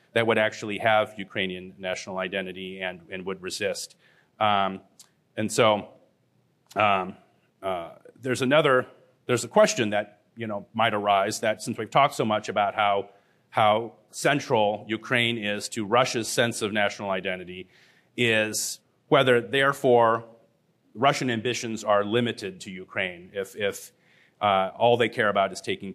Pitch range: 105-130 Hz